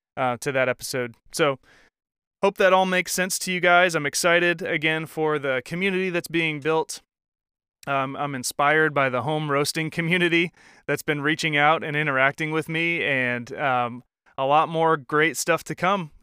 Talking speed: 170 wpm